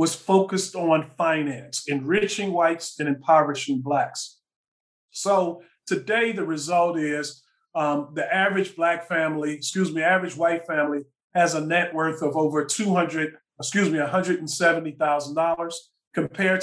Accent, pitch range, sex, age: American, 150-185 Hz, male, 40-59